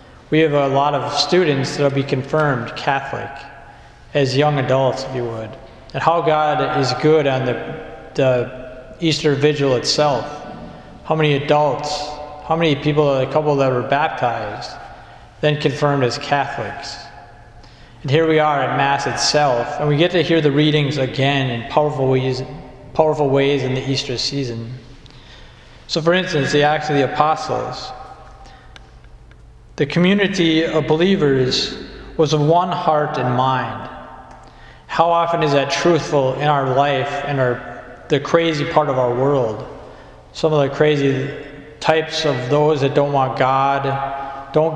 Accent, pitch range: American, 130-155 Hz